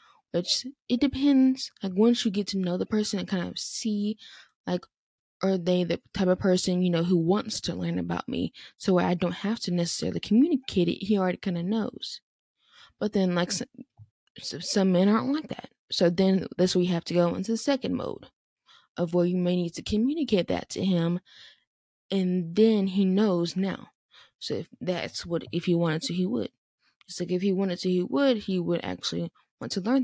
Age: 20-39